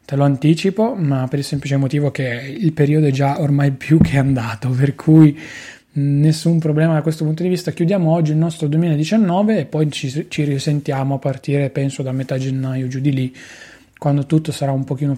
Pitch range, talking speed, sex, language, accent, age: 145-175 Hz, 195 wpm, male, Italian, native, 20-39